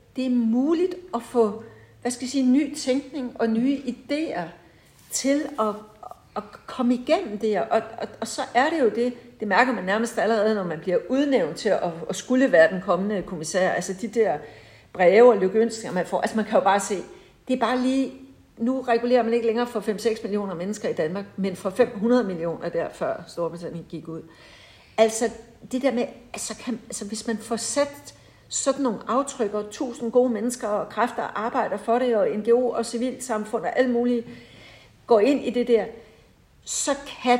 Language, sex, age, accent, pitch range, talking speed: Danish, female, 60-79, native, 195-245 Hz, 195 wpm